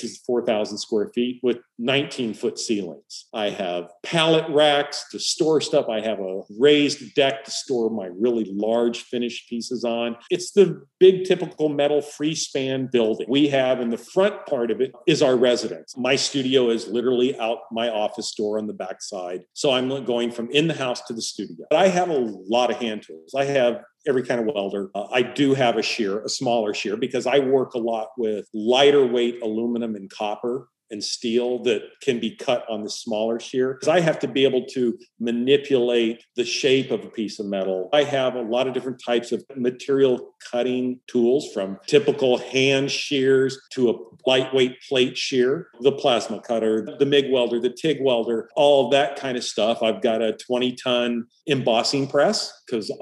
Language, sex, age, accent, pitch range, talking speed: English, male, 50-69, American, 115-140 Hz, 190 wpm